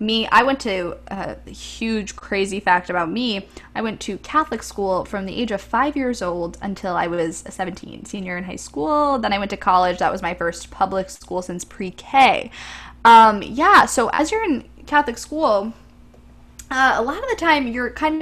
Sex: female